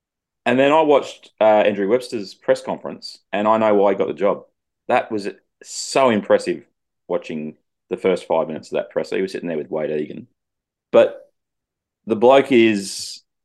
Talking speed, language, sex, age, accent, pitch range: 185 wpm, English, male, 30-49, Australian, 90-120 Hz